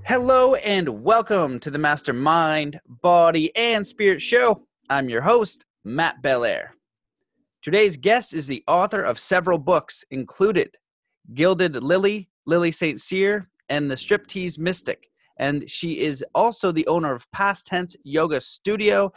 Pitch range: 150-200 Hz